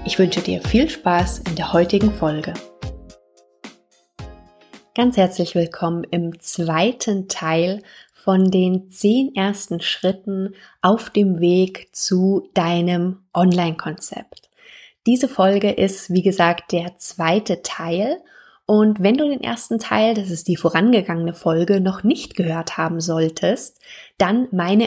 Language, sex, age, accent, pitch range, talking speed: German, female, 20-39, German, 175-205 Hz, 125 wpm